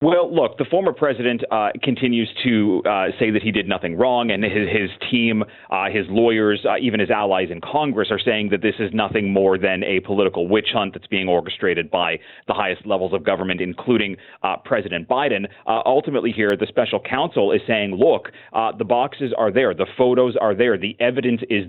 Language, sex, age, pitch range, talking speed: English, male, 30-49, 100-120 Hz, 205 wpm